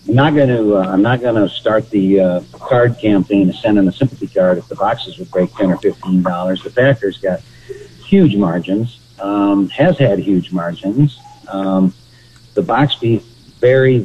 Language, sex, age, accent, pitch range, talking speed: English, male, 50-69, American, 95-115 Hz, 190 wpm